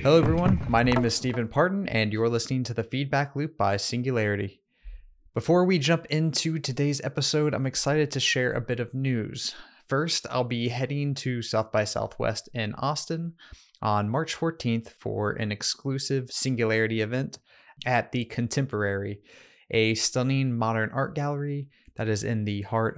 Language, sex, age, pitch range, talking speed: English, male, 20-39, 110-135 Hz, 160 wpm